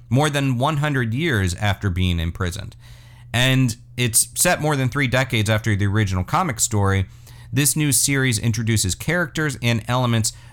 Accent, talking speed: American, 150 wpm